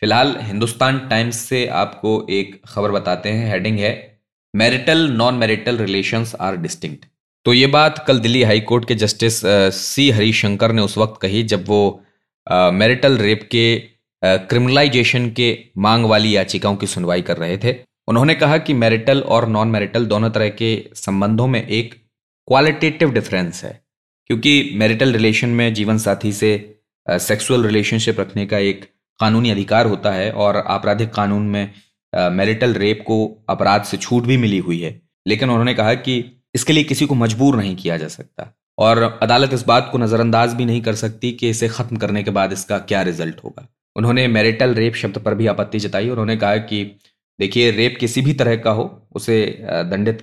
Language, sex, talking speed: Hindi, male, 175 wpm